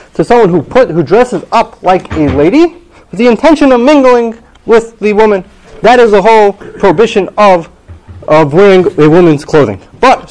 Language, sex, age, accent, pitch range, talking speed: English, male, 30-49, American, 150-210 Hz, 175 wpm